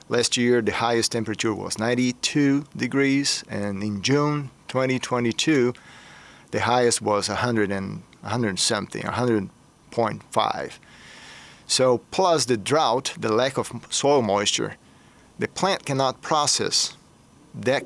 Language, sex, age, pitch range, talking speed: English, male, 40-59, 110-135 Hz, 120 wpm